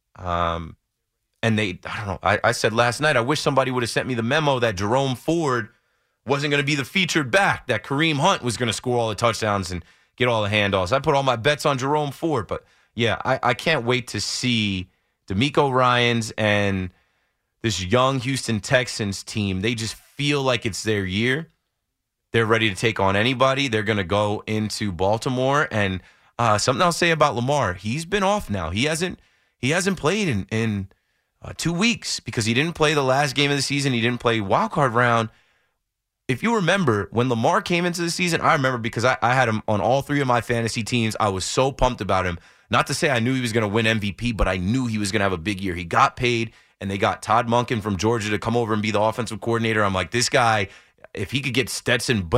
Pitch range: 105-135 Hz